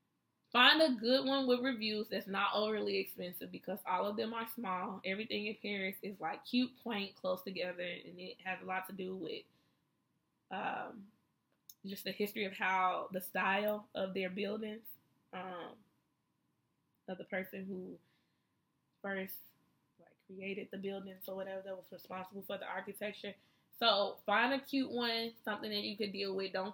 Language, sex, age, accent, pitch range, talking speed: English, female, 20-39, American, 190-215 Hz, 165 wpm